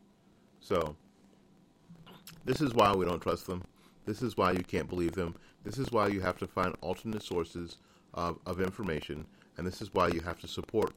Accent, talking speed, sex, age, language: American, 190 wpm, male, 40-59, English